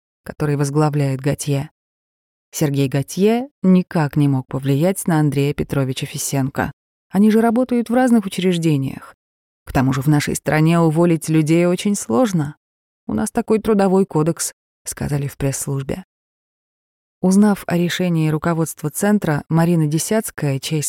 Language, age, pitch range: Russian, 20-39, 140-180 Hz